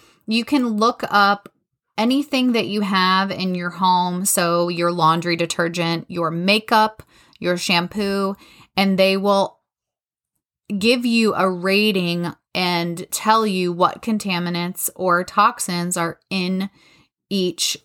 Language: English